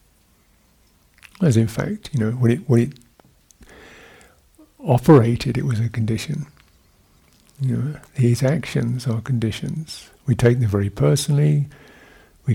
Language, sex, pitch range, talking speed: English, male, 110-140 Hz, 125 wpm